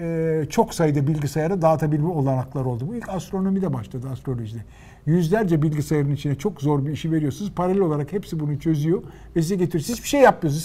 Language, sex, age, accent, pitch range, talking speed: Turkish, male, 50-69, native, 135-185 Hz, 180 wpm